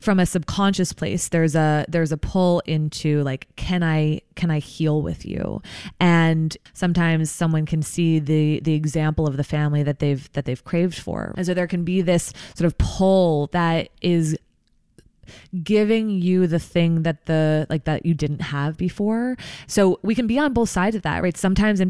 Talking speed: 190 wpm